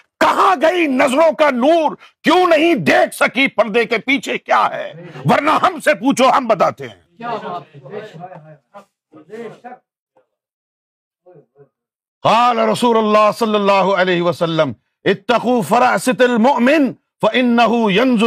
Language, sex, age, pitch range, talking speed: Urdu, male, 50-69, 180-290 Hz, 100 wpm